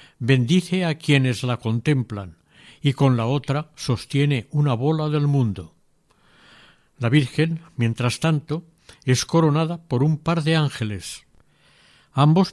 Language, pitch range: Spanish, 125-160 Hz